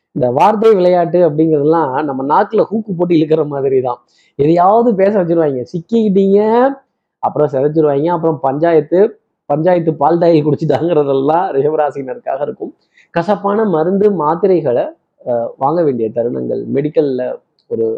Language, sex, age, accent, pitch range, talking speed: Tamil, male, 20-39, native, 145-195 Hz, 105 wpm